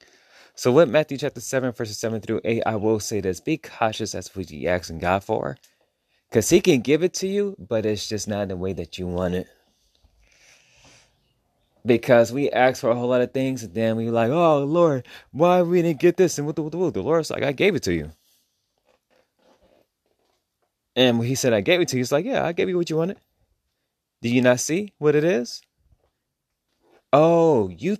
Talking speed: 215 wpm